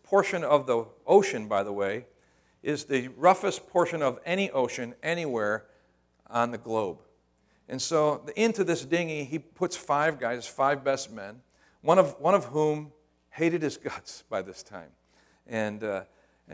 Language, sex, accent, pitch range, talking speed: English, male, American, 115-165 Hz, 155 wpm